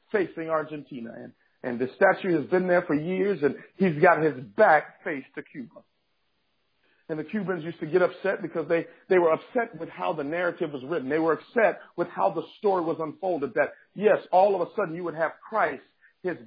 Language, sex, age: English, male, 50-69